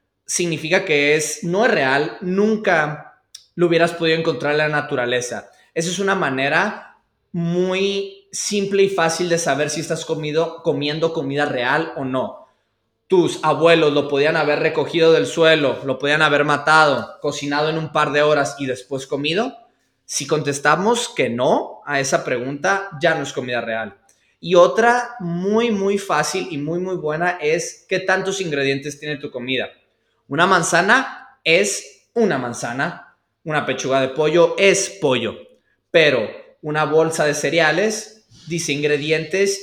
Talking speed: 150 wpm